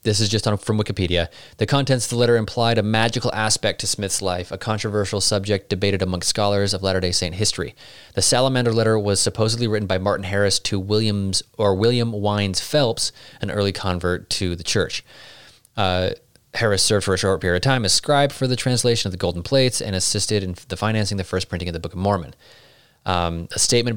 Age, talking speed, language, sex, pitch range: 30-49, 210 wpm, English, male, 90-120 Hz